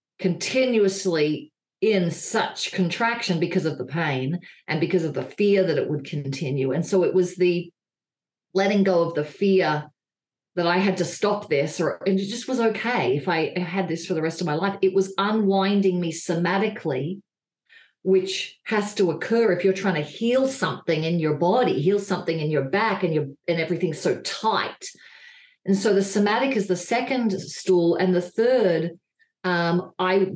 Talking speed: 180 wpm